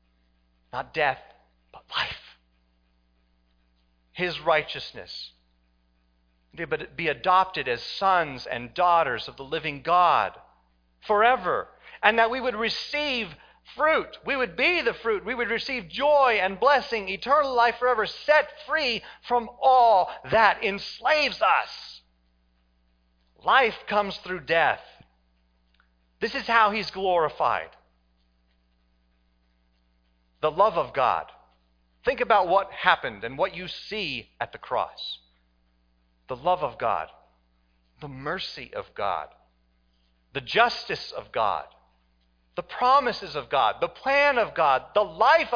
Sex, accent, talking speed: male, American, 120 wpm